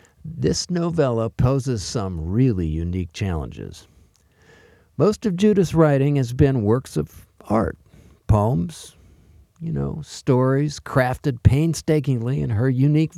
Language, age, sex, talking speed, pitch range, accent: English, 50-69, male, 115 wpm, 115-160 Hz, American